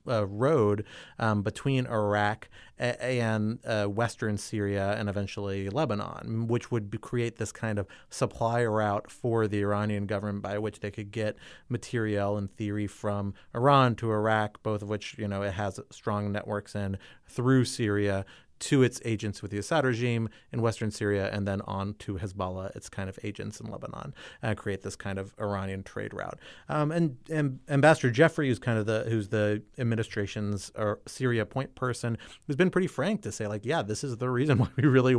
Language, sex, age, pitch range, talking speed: English, male, 30-49, 105-125 Hz, 185 wpm